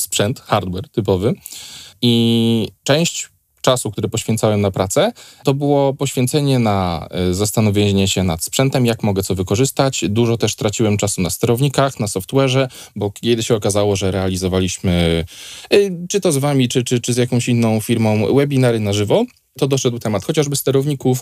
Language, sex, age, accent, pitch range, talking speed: Polish, male, 20-39, native, 105-135 Hz, 155 wpm